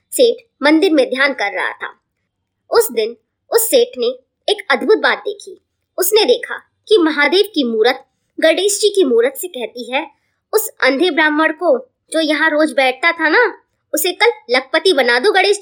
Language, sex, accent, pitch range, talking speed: Hindi, male, native, 265-400 Hz, 165 wpm